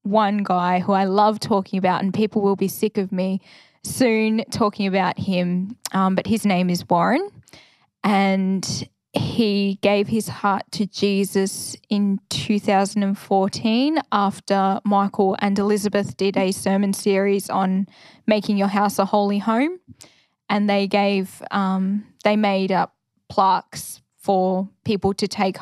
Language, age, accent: English, 10-29, Australian